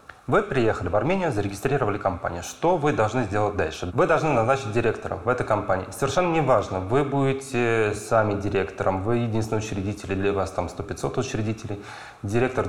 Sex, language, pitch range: male, Russian, 100-130 Hz